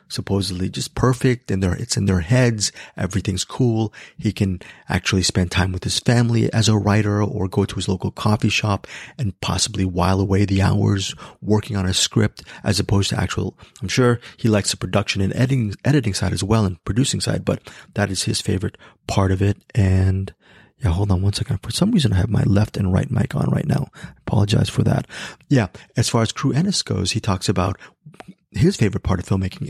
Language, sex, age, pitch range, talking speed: English, male, 30-49, 95-120 Hz, 210 wpm